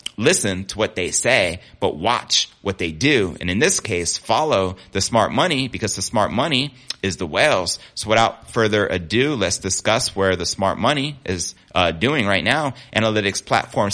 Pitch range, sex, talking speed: 95-115 Hz, male, 180 wpm